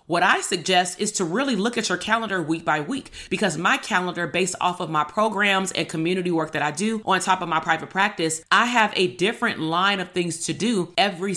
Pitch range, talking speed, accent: 165-210 Hz, 225 wpm, American